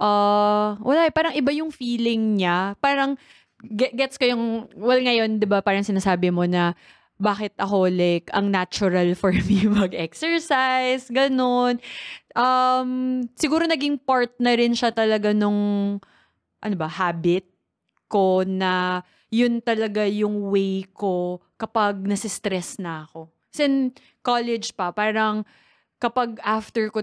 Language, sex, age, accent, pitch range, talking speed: Filipino, female, 20-39, native, 200-255 Hz, 130 wpm